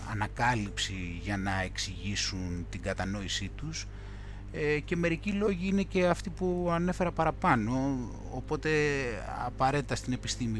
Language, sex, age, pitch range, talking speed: Greek, male, 30-49, 100-155 Hz, 115 wpm